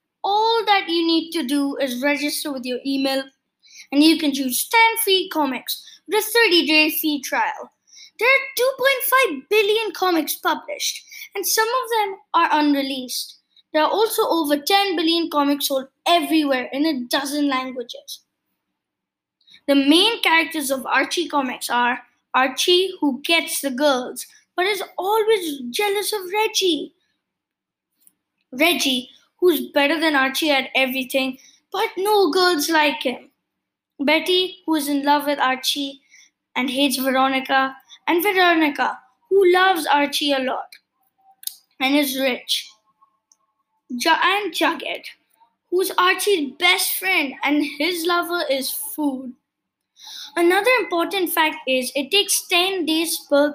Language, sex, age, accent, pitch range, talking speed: English, female, 20-39, Indian, 275-375 Hz, 135 wpm